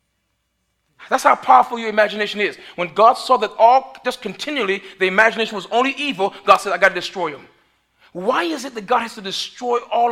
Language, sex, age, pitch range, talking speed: English, male, 40-59, 180-225 Hz, 200 wpm